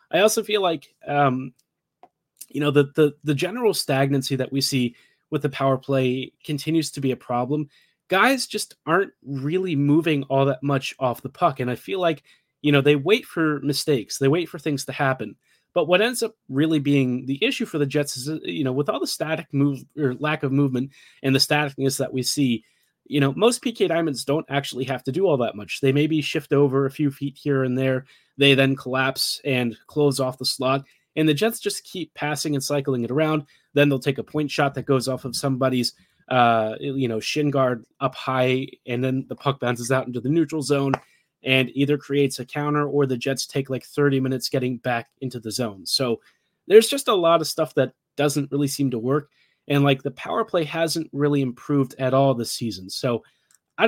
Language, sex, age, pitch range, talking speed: English, male, 30-49, 130-150 Hz, 215 wpm